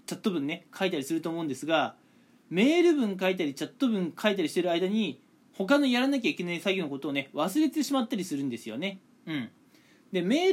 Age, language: 20-39, Japanese